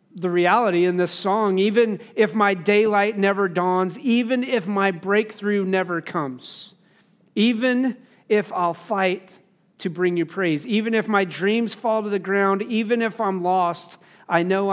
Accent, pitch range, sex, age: American, 180-215 Hz, male, 40-59